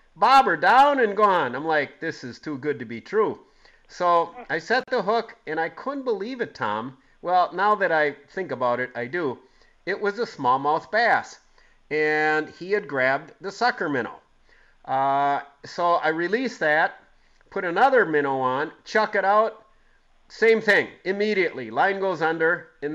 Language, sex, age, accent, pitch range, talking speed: English, male, 40-59, American, 145-190 Hz, 165 wpm